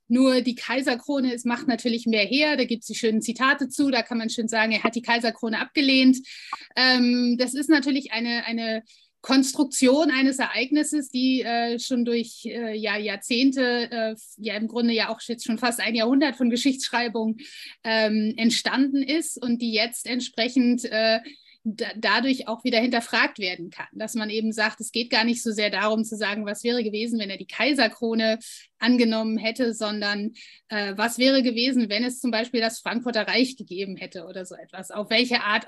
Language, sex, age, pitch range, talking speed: German, female, 30-49, 220-255 Hz, 185 wpm